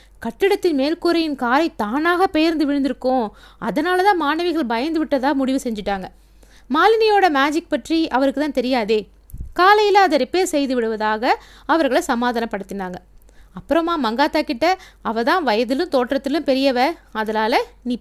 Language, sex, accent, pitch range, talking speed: Tamil, female, native, 235-315 Hz, 115 wpm